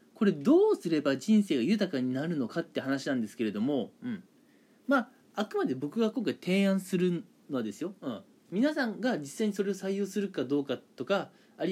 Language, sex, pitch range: Japanese, male, 145-235 Hz